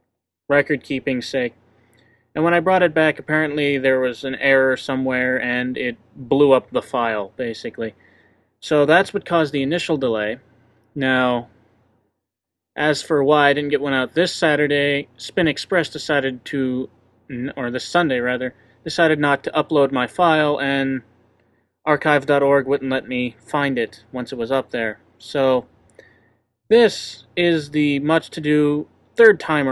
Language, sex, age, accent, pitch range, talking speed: English, male, 30-49, American, 120-150 Hz, 150 wpm